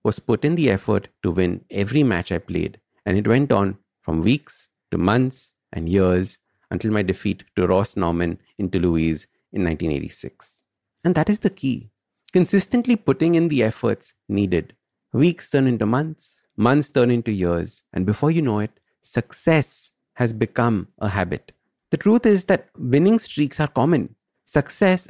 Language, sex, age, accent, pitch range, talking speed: English, male, 50-69, Indian, 100-150 Hz, 165 wpm